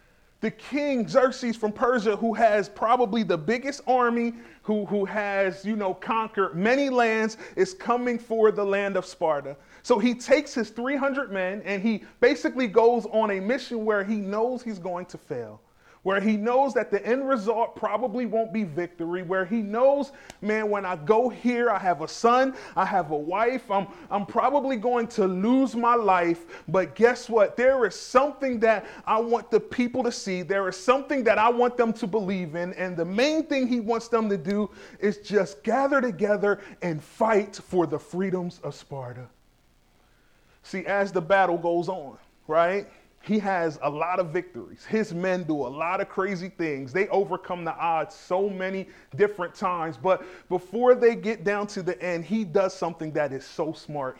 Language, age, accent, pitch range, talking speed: English, 30-49, American, 180-235 Hz, 185 wpm